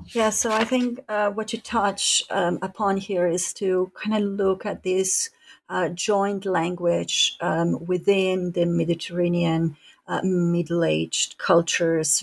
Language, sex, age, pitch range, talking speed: English, female, 40-59, 155-180 Hz, 135 wpm